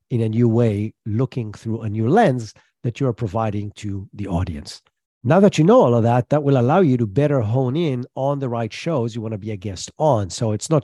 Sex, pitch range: male, 110-145 Hz